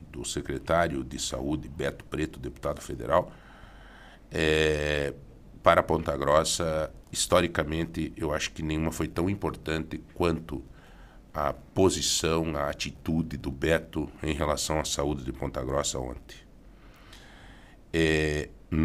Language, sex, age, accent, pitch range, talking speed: Portuguese, male, 60-79, Brazilian, 70-85 Hz, 110 wpm